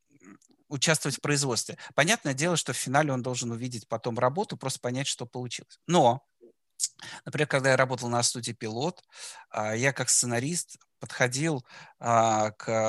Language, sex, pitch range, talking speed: Russian, male, 120-155 Hz, 140 wpm